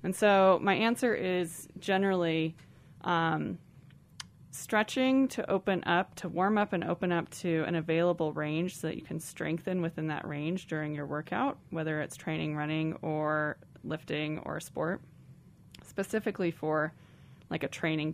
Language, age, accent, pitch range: English, 20-39, American, 160-190 Hz